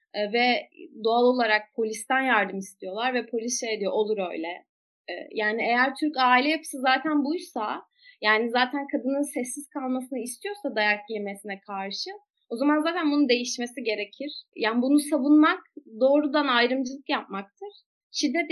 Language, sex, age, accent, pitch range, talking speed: Turkish, female, 30-49, native, 225-295 Hz, 135 wpm